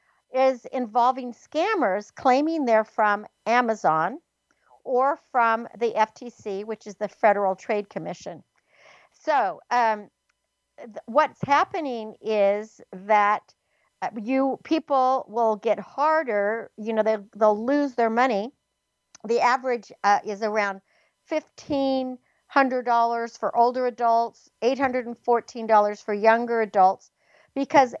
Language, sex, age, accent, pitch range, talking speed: English, female, 60-79, American, 210-260 Hz, 120 wpm